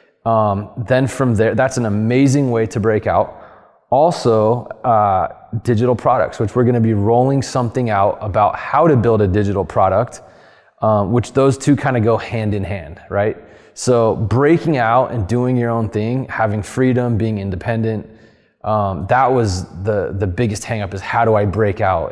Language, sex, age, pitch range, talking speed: English, male, 20-39, 105-120 Hz, 180 wpm